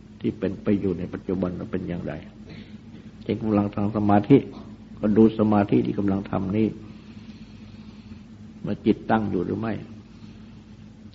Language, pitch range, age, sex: Thai, 105-110 Hz, 60-79, male